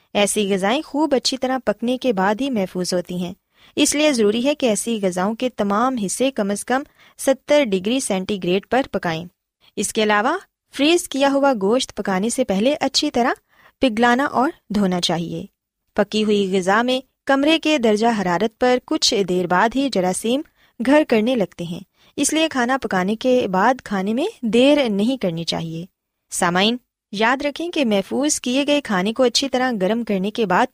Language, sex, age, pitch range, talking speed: Urdu, female, 20-39, 195-270 Hz, 180 wpm